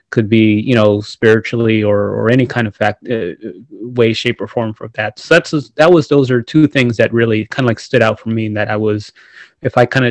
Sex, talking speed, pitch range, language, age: male, 255 wpm, 110-130 Hz, English, 30-49